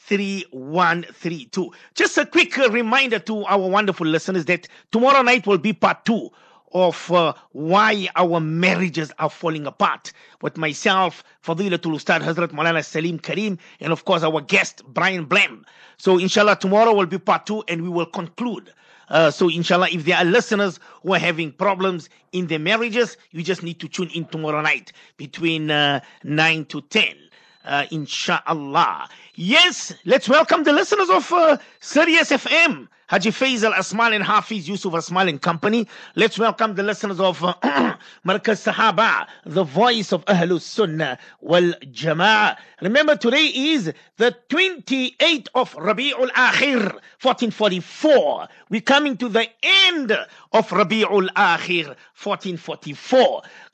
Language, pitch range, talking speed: English, 170-240 Hz, 145 wpm